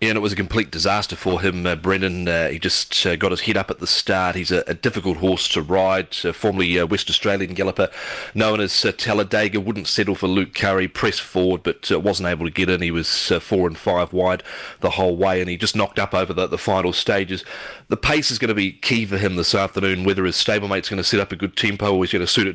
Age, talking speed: 30-49, 270 wpm